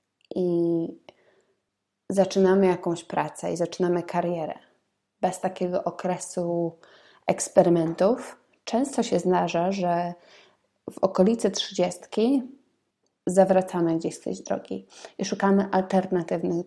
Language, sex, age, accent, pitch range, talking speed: Polish, female, 20-39, native, 175-200 Hz, 95 wpm